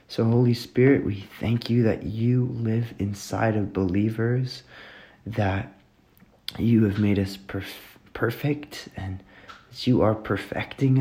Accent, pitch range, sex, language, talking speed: American, 105-120 Hz, male, English, 130 wpm